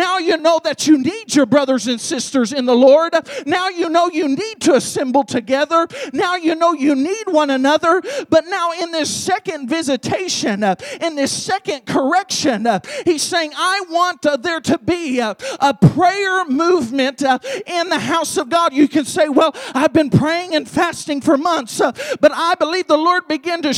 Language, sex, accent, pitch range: English, male, American, 290-360 Hz